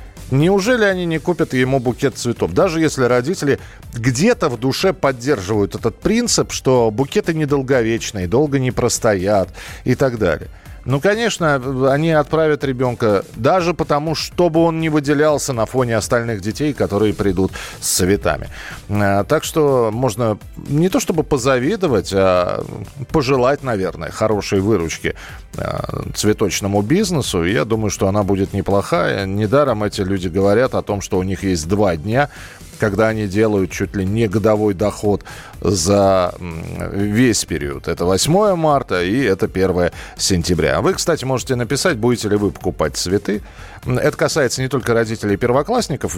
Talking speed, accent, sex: 140 wpm, native, male